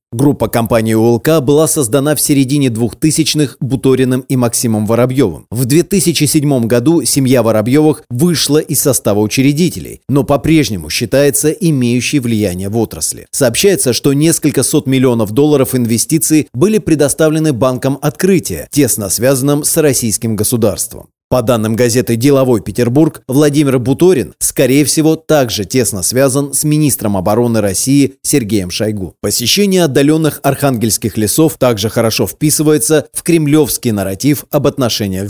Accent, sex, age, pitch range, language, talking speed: native, male, 30-49, 115-145 Hz, Russian, 125 wpm